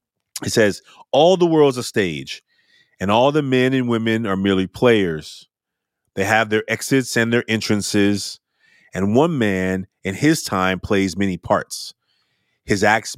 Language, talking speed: English, 155 wpm